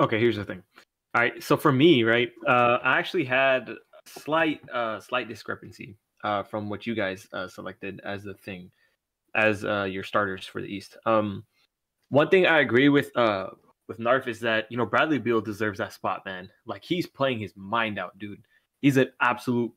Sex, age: male, 20-39